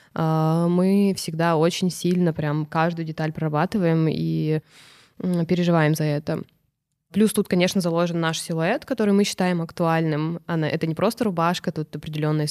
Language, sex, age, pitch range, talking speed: Russian, female, 20-39, 160-190 Hz, 135 wpm